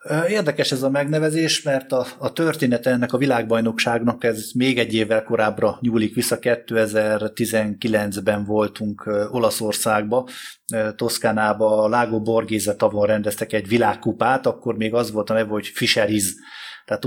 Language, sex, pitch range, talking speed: Hungarian, male, 105-120 Hz, 125 wpm